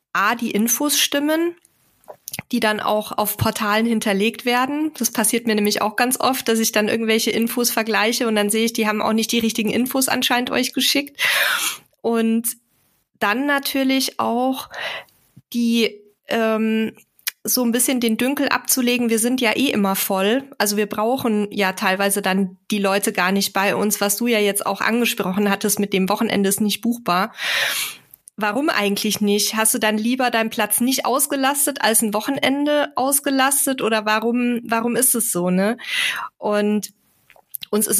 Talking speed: 165 wpm